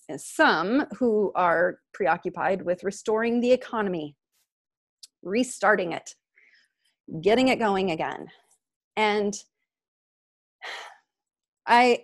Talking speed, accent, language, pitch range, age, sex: 80 wpm, American, English, 175-240 Hz, 30-49, female